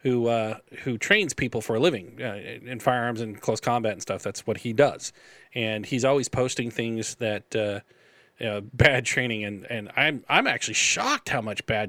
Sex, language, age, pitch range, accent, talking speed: male, English, 40-59, 115-140 Hz, American, 200 wpm